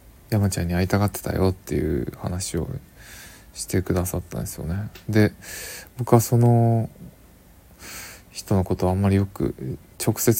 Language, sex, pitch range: Japanese, male, 85-105 Hz